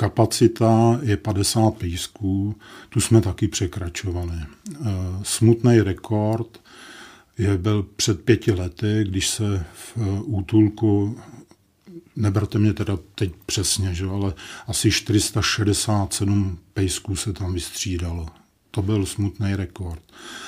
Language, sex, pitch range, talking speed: Czech, male, 95-110 Hz, 100 wpm